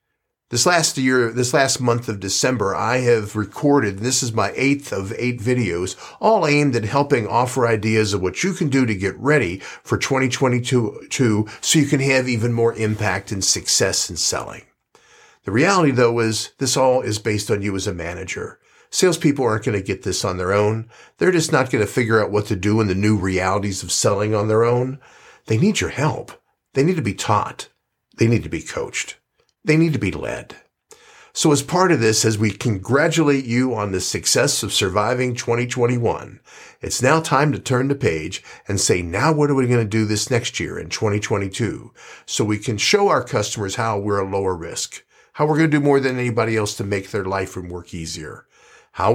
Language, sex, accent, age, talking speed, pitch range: English, male, American, 50-69, 205 wpm, 105-135 Hz